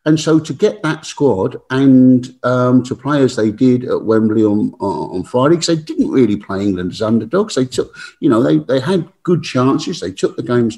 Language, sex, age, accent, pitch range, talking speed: English, male, 50-69, British, 125-165 Hz, 215 wpm